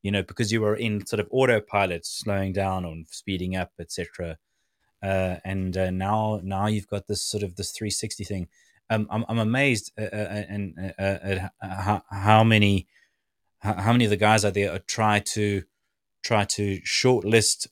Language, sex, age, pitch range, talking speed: English, male, 20-39, 95-110 Hz, 185 wpm